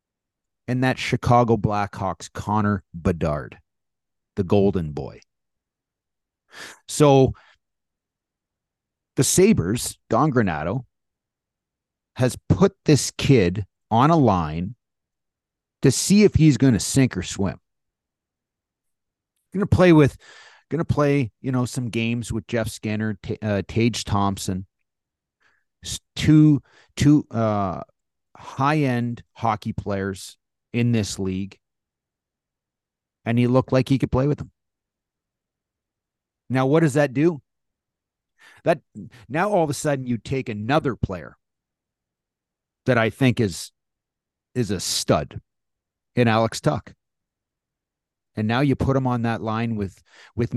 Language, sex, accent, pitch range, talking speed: English, male, American, 100-130 Hz, 120 wpm